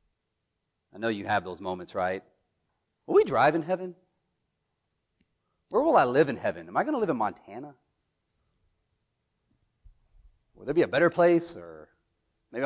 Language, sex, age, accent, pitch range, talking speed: English, male, 30-49, American, 120-180 Hz, 150 wpm